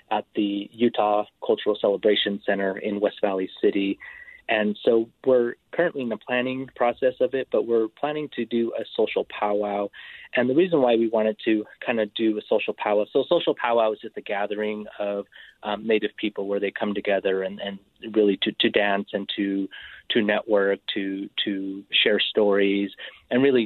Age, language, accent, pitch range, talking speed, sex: 30-49, English, American, 100-120 Hz, 185 wpm, male